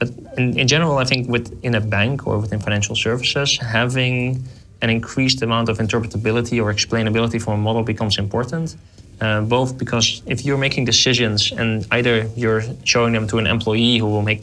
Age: 20-39